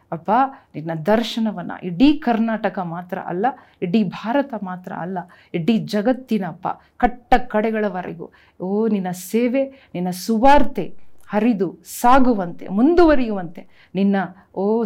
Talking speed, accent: 100 wpm, native